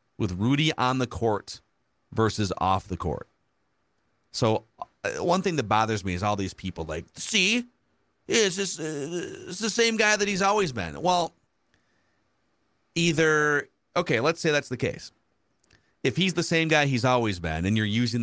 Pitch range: 105-140 Hz